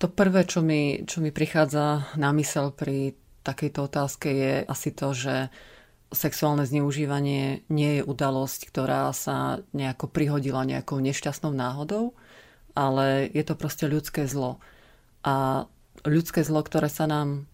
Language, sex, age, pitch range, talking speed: Slovak, female, 30-49, 140-160 Hz, 135 wpm